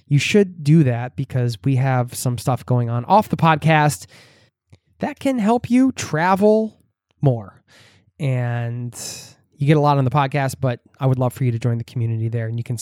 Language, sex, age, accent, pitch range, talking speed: English, male, 20-39, American, 125-160 Hz, 195 wpm